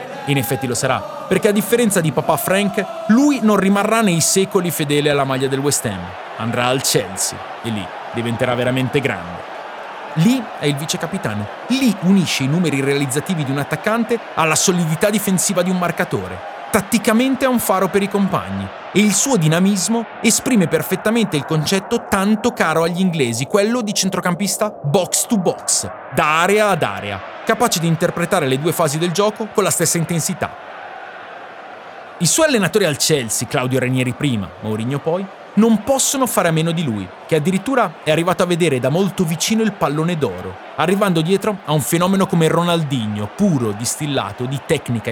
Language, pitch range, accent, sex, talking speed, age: Italian, 140-205 Hz, native, male, 170 wpm, 30-49